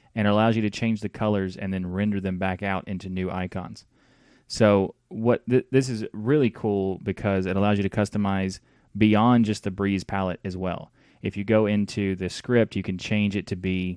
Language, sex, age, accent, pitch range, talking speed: English, male, 30-49, American, 95-110 Hz, 210 wpm